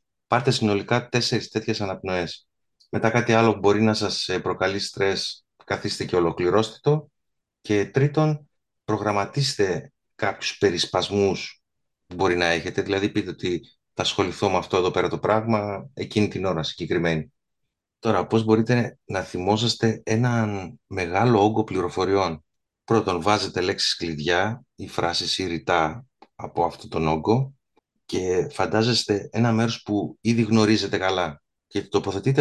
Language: Greek